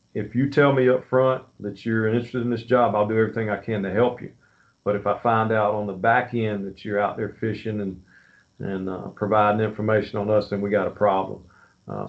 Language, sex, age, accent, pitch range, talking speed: English, male, 50-69, American, 105-120 Hz, 235 wpm